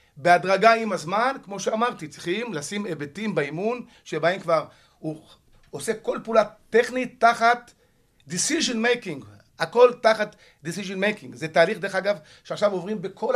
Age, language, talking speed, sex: 50-69, Hebrew, 135 wpm, male